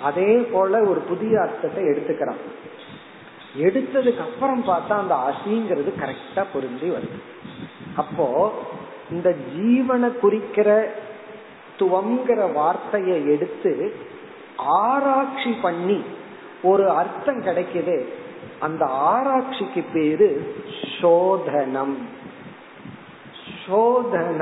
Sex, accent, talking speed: male, native, 75 wpm